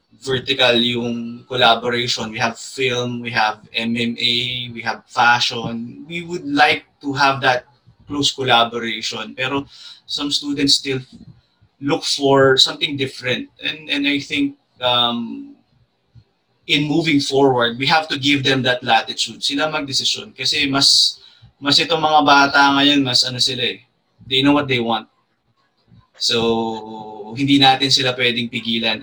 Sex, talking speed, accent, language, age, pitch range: male, 135 wpm, Filipino, English, 20-39, 120-145 Hz